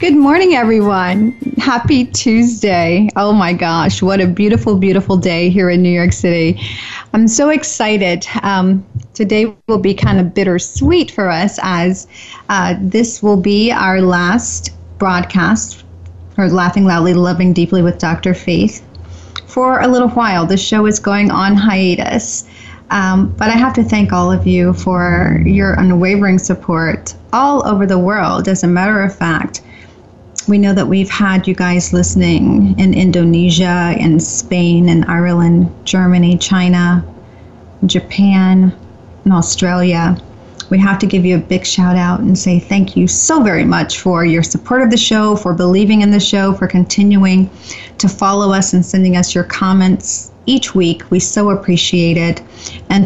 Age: 30-49